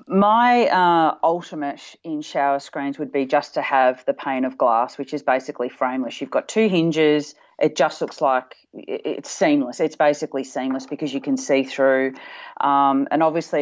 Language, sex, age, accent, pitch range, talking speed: English, female, 40-59, Australian, 140-175 Hz, 175 wpm